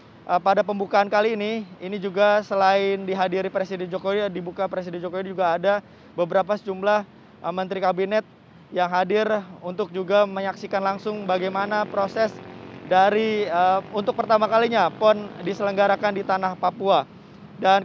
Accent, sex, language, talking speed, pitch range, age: native, male, Indonesian, 130 wpm, 190-210 Hz, 20-39